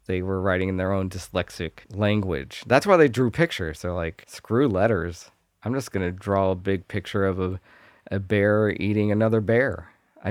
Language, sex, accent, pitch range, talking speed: English, male, American, 90-110 Hz, 190 wpm